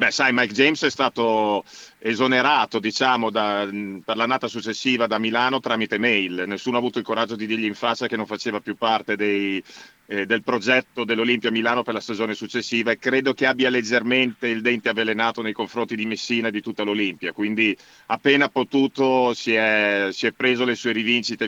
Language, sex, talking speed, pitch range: Italian, male, 190 wpm, 110-125 Hz